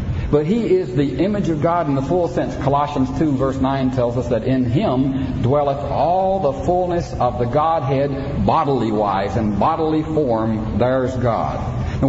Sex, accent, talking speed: male, American, 175 wpm